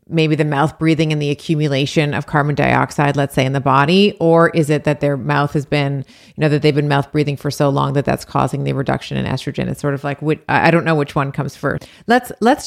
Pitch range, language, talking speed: 140-160 Hz, English, 250 wpm